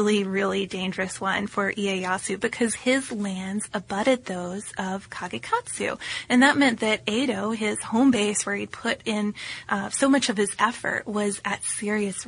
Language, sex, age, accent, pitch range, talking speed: English, female, 20-39, American, 195-230 Hz, 165 wpm